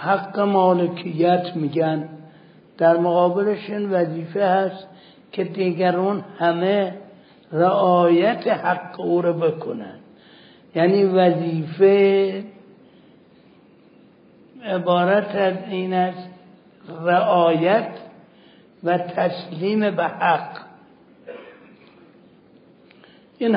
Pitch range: 175-195 Hz